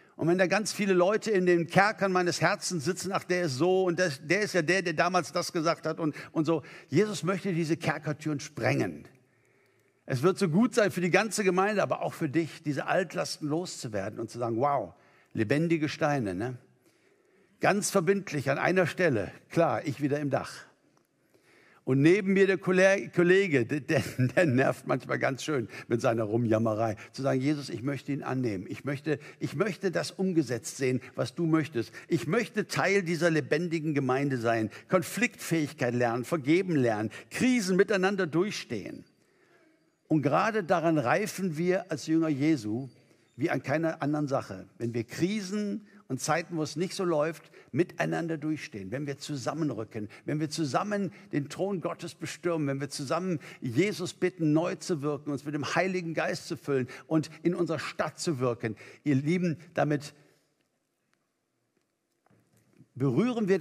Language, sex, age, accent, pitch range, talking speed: German, male, 60-79, German, 140-180 Hz, 165 wpm